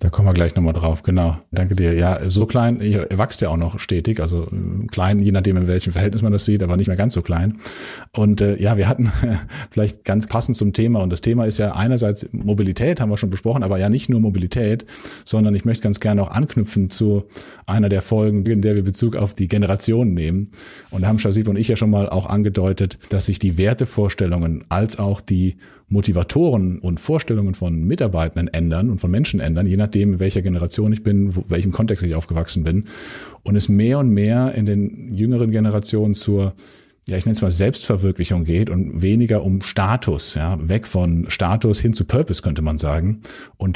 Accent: German